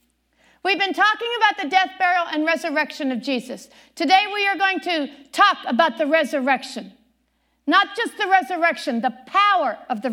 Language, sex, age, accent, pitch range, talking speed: English, female, 50-69, American, 275-395 Hz, 165 wpm